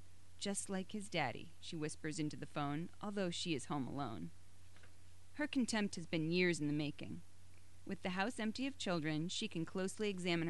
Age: 30-49